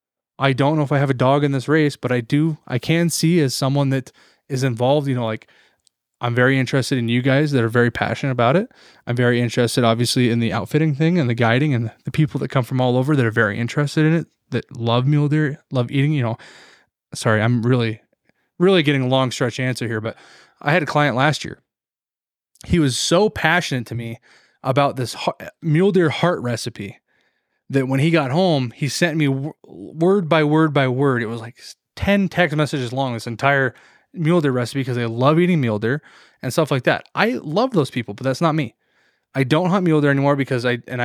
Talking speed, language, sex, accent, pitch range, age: 220 wpm, English, male, American, 120-155 Hz, 20-39